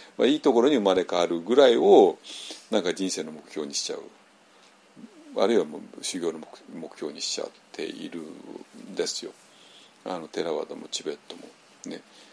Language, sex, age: Japanese, male, 50-69